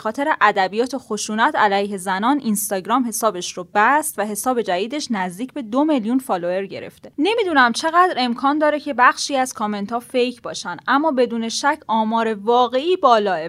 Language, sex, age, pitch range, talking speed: Persian, female, 10-29, 215-285 Hz, 155 wpm